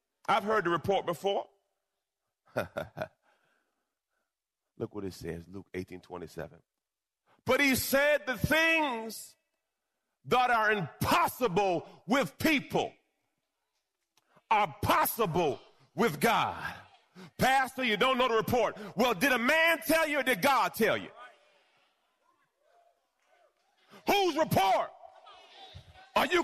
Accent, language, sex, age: American, English, male, 40-59